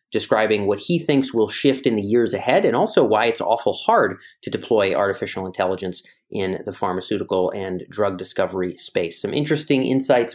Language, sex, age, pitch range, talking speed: English, male, 30-49, 110-145 Hz, 175 wpm